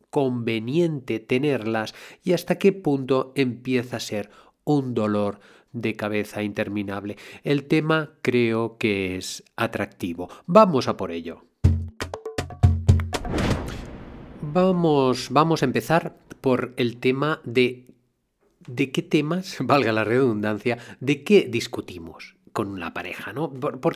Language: Spanish